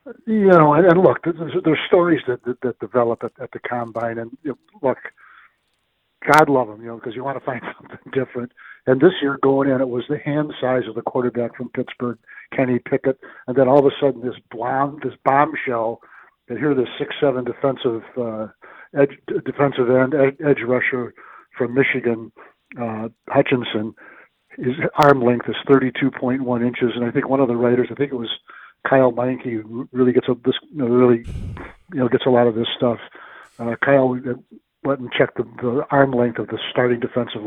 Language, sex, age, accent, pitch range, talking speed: English, male, 60-79, American, 120-140 Hz, 195 wpm